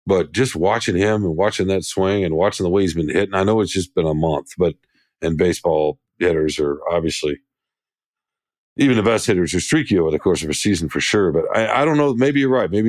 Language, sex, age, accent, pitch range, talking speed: English, male, 50-69, American, 95-125 Hz, 235 wpm